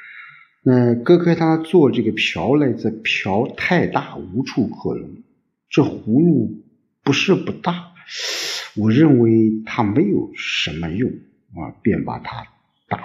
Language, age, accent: Chinese, 50-69, native